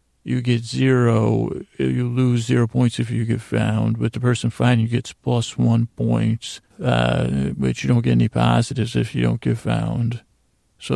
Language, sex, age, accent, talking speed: English, male, 40-59, American, 180 wpm